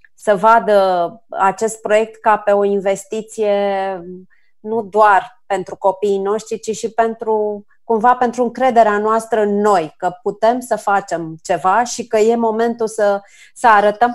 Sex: female